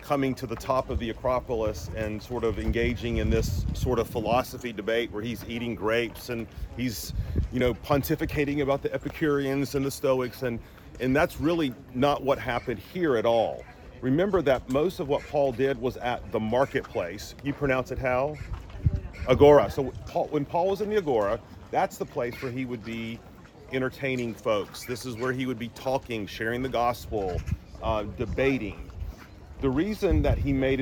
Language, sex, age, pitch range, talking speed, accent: English, male, 40-59, 110-140 Hz, 175 wpm, American